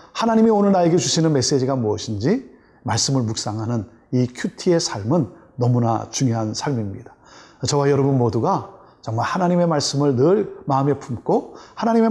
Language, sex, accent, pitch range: Korean, male, native, 115-155 Hz